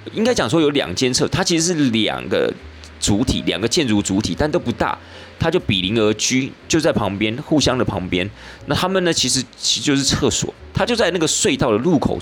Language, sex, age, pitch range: Chinese, male, 30-49, 95-145 Hz